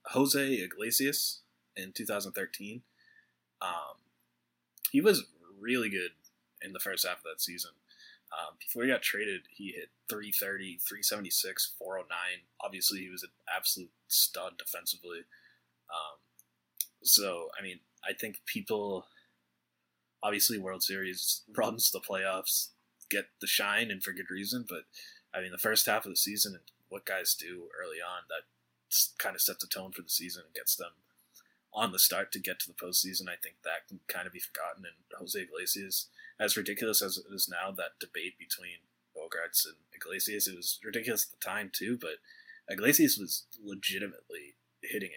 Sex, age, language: male, 20-39, English